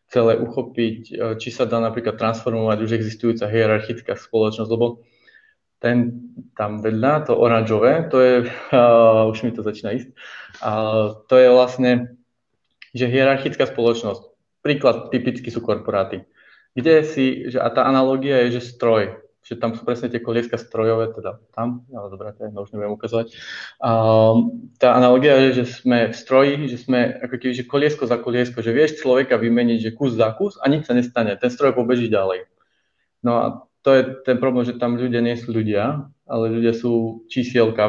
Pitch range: 115-130 Hz